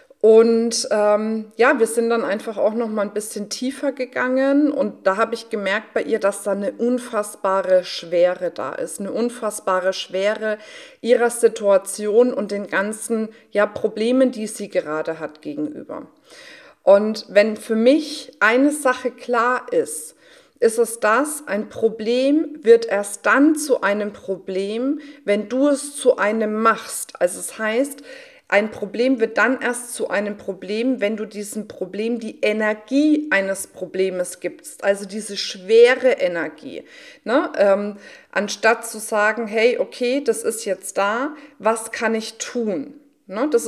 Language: German